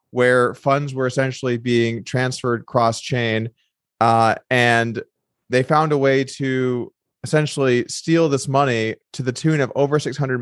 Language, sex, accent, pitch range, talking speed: English, male, American, 125-150 Hz, 145 wpm